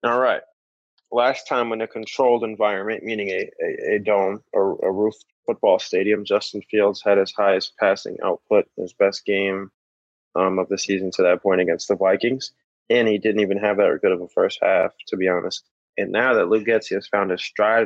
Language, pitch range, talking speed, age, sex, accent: English, 100-120 Hz, 210 wpm, 20-39, male, American